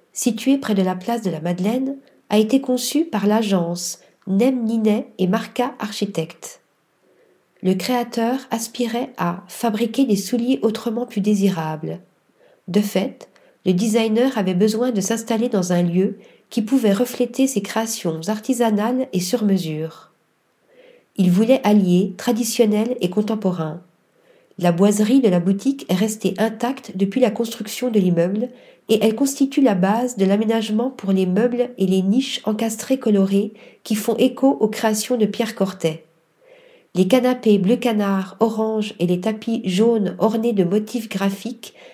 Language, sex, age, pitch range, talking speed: French, female, 40-59, 195-240 Hz, 145 wpm